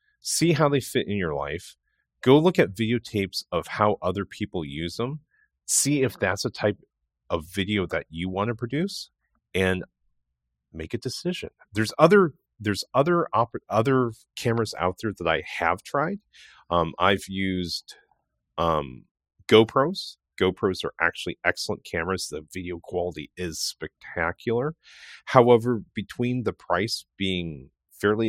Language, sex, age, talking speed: English, male, 30-49, 140 wpm